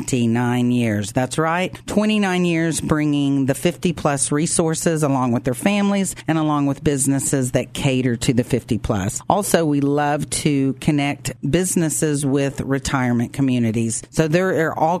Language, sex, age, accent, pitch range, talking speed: English, female, 50-69, American, 130-160 Hz, 150 wpm